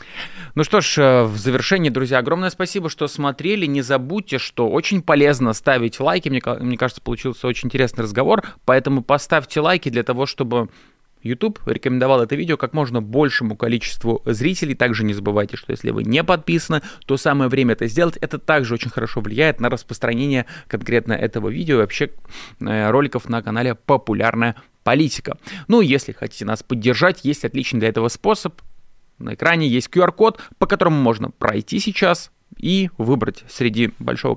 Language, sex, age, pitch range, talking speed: Russian, male, 20-39, 115-155 Hz, 160 wpm